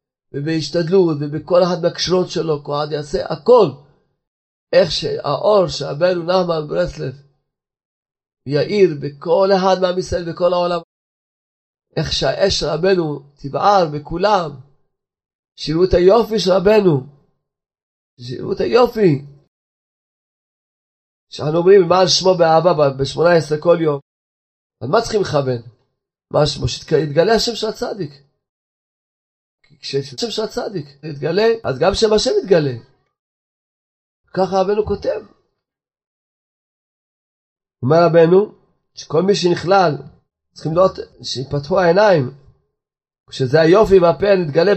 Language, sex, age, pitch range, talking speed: Hebrew, male, 40-59, 145-195 Hz, 105 wpm